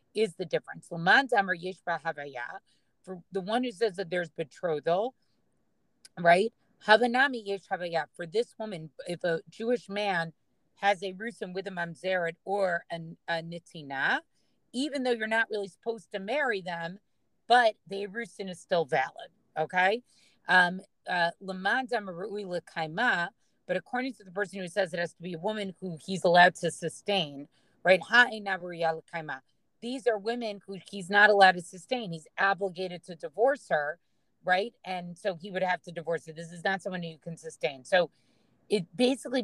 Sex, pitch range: female, 170-210 Hz